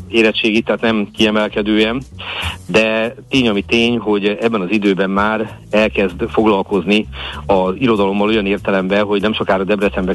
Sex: male